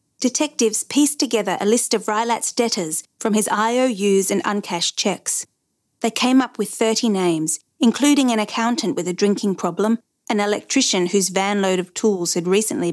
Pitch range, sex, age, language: 185-235 Hz, female, 30-49, English